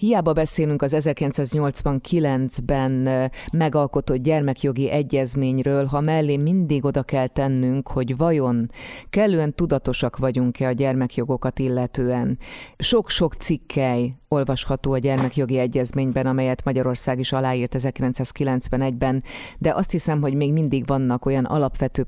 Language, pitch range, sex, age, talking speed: Hungarian, 130-145 Hz, female, 30-49, 110 wpm